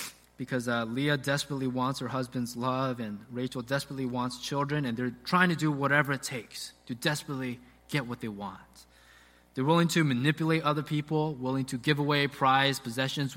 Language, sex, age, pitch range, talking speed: English, male, 20-39, 120-175 Hz, 175 wpm